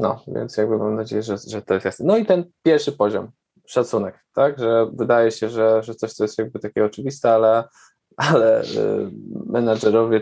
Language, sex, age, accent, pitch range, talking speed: Polish, male, 20-39, native, 100-115 Hz, 190 wpm